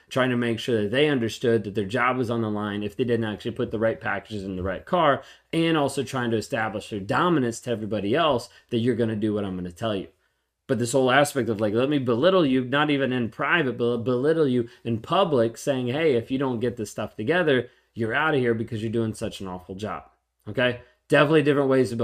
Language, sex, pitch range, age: English, male, 115-140 Hz, 30-49